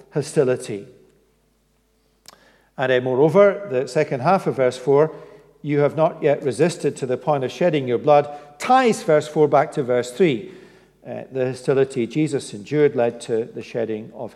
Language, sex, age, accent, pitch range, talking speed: English, male, 50-69, British, 125-165 Hz, 165 wpm